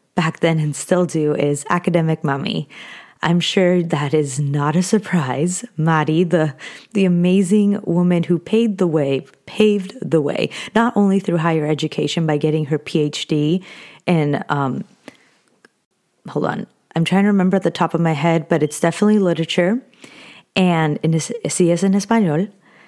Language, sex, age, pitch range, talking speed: English, female, 30-49, 160-200 Hz, 155 wpm